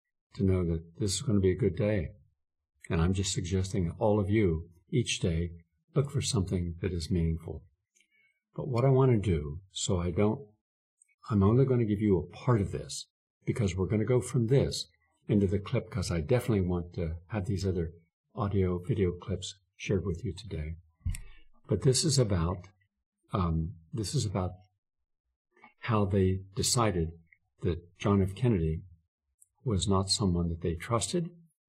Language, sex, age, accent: English, male, 50-69, American